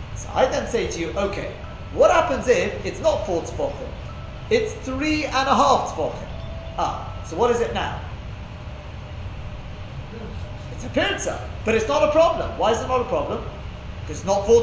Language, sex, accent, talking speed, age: English, male, British, 175 wpm, 30-49